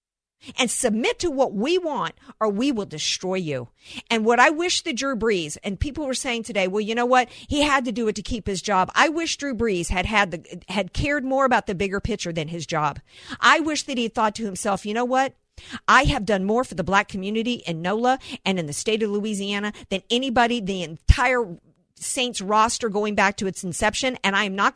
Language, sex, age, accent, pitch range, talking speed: English, female, 50-69, American, 200-280 Hz, 230 wpm